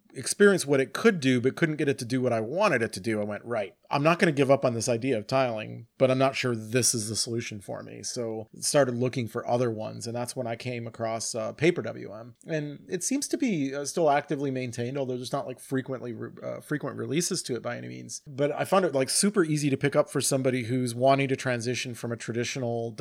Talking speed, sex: 260 wpm, male